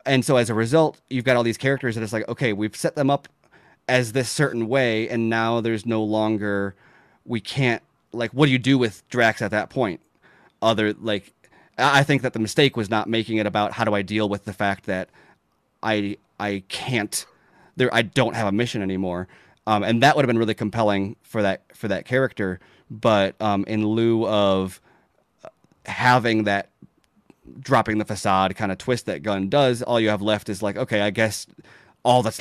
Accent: American